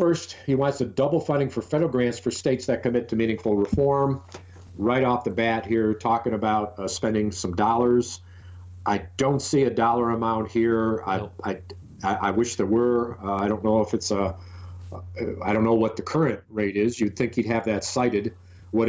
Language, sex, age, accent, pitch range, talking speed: English, male, 50-69, American, 100-115 Hz, 195 wpm